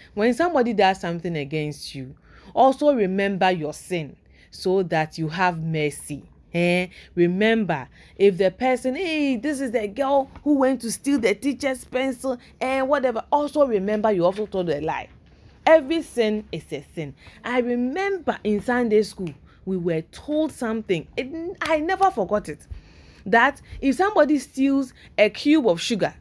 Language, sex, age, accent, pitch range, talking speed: English, female, 20-39, Nigerian, 180-265 Hz, 155 wpm